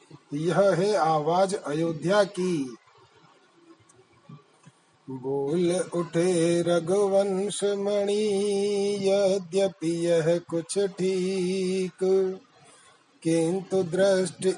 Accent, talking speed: native, 60 wpm